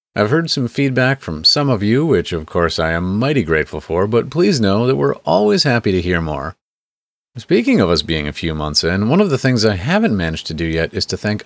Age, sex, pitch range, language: 40-59, male, 90-130 Hz, English